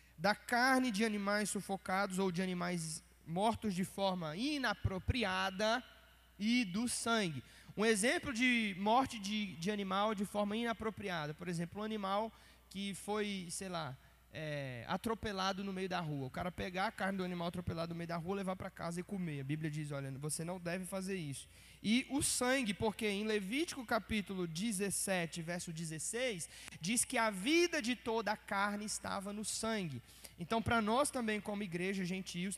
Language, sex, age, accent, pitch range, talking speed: Portuguese, male, 20-39, Brazilian, 175-225 Hz, 170 wpm